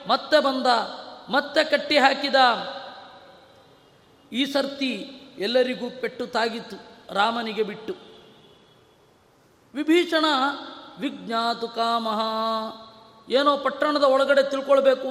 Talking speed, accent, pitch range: 70 wpm, native, 220-265 Hz